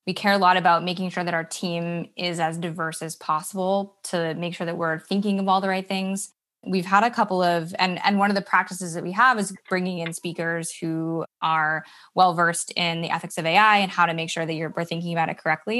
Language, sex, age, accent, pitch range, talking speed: English, female, 20-39, American, 165-190 Hz, 245 wpm